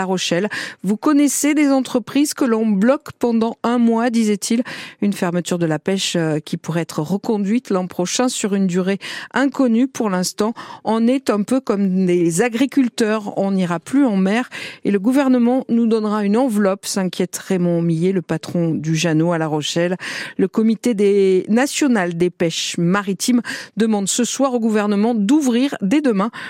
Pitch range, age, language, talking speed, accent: 185-245 Hz, 50-69, French, 170 wpm, French